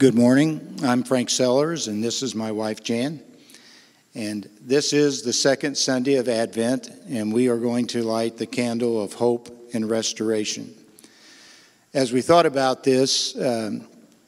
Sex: male